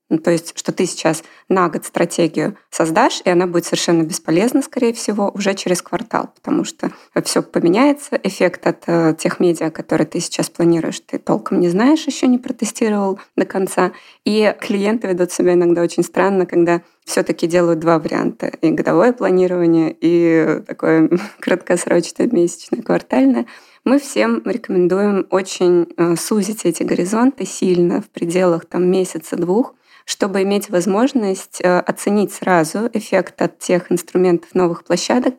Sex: female